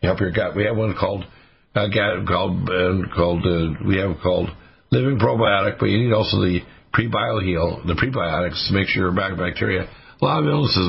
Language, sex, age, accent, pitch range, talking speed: English, male, 60-79, American, 95-120 Hz, 200 wpm